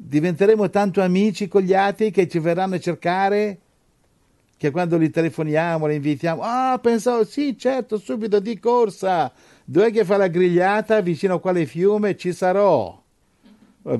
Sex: male